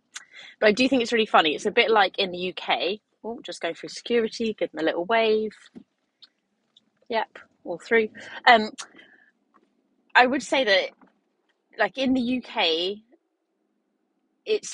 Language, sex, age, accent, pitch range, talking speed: English, female, 20-39, British, 175-240 Hz, 160 wpm